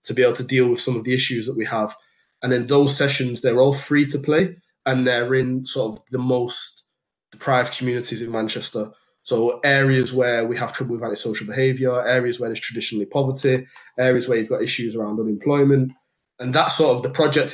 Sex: male